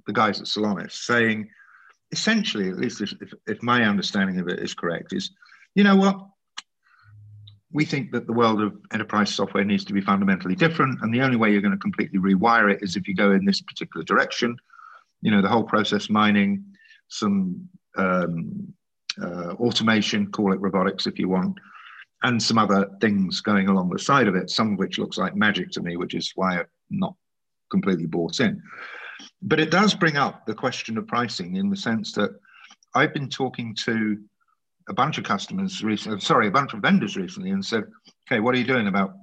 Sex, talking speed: male, 200 wpm